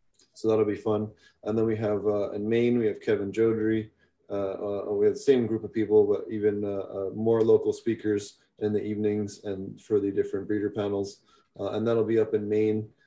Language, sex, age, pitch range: English, male, 20-39, 100-120 Hz